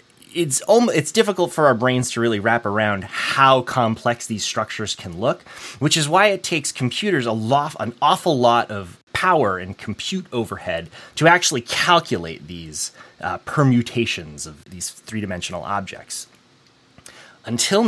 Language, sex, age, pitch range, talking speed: English, male, 30-49, 110-155 Hz, 150 wpm